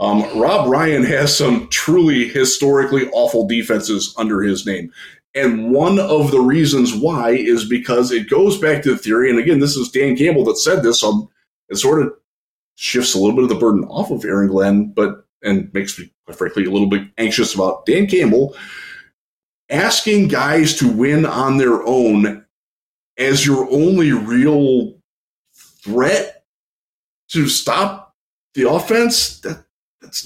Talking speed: 160 wpm